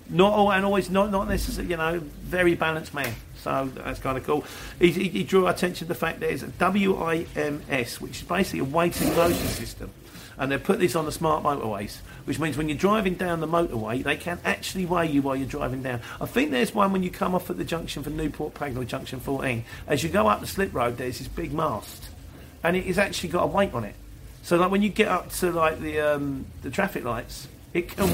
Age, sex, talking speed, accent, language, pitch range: 40-59, male, 235 wpm, British, English, 140-195 Hz